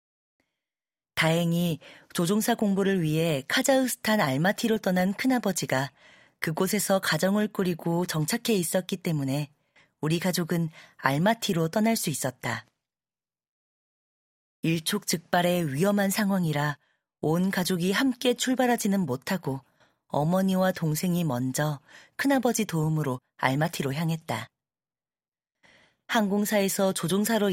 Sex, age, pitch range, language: female, 40-59, 150-200 Hz, Korean